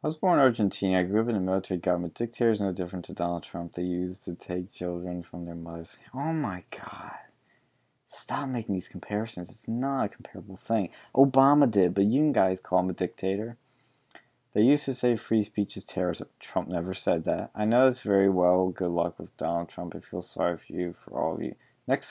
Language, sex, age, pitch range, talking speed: English, male, 20-39, 90-115 Hz, 215 wpm